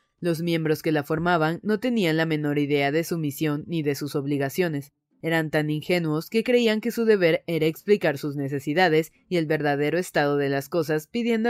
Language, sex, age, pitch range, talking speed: Spanish, female, 30-49, 150-180 Hz, 195 wpm